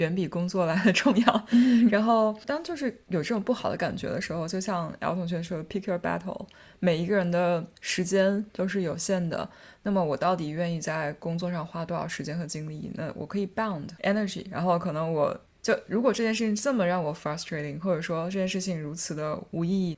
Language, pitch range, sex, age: Chinese, 170-205 Hz, female, 20-39